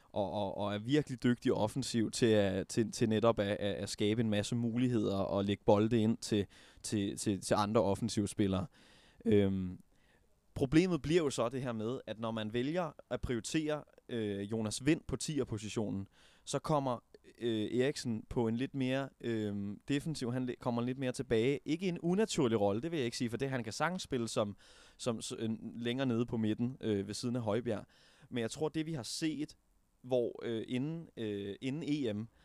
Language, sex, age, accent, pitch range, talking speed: Danish, male, 20-39, native, 105-130 Hz, 195 wpm